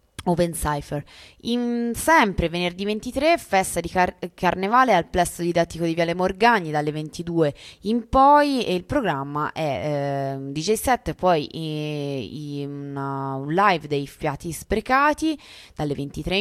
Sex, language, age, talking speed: female, Italian, 20-39, 130 wpm